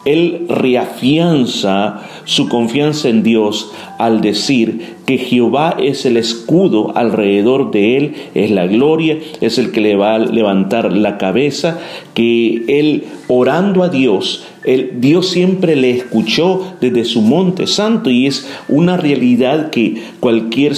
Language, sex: Spanish, male